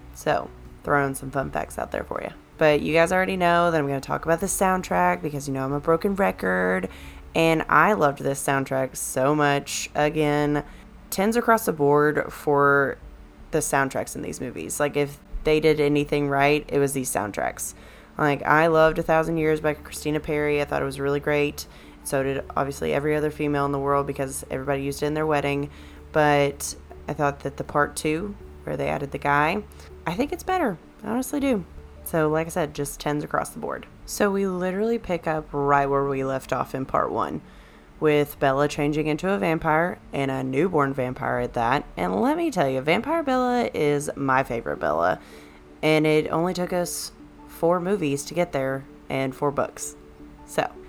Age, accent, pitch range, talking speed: 20-39, American, 135-160 Hz, 195 wpm